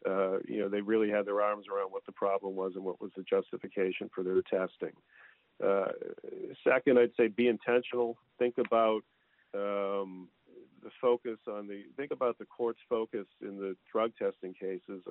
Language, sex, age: English, male, 50-69